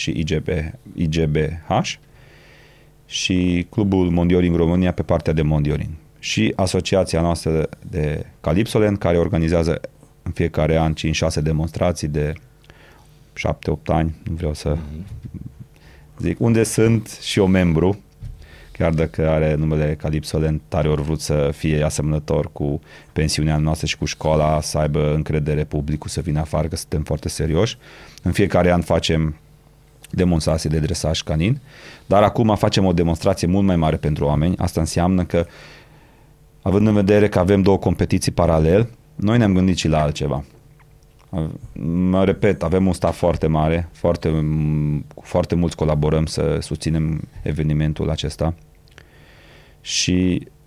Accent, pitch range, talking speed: native, 75-95 Hz, 135 wpm